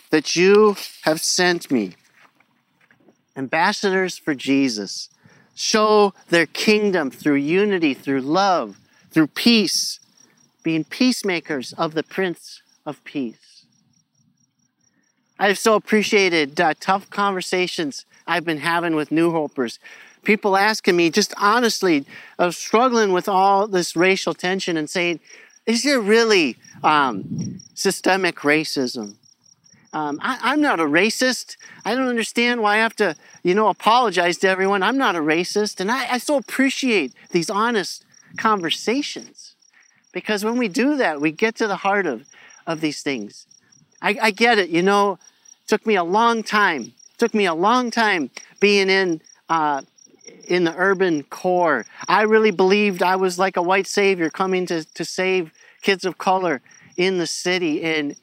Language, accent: English, American